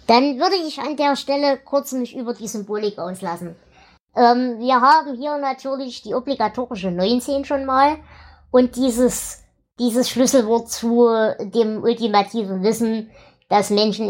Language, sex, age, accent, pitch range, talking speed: German, male, 20-39, German, 220-260 Hz, 135 wpm